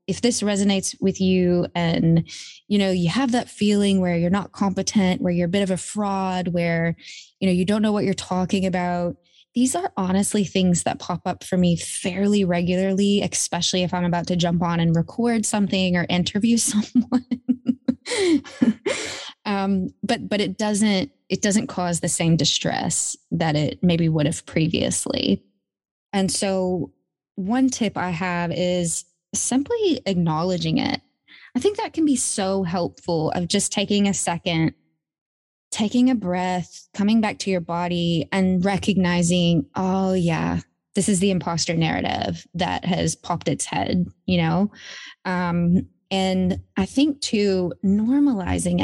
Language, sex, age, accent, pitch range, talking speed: English, female, 20-39, American, 175-210 Hz, 155 wpm